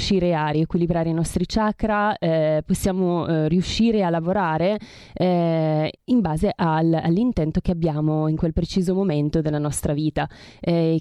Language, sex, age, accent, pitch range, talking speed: Italian, female, 20-39, native, 165-200 Hz, 145 wpm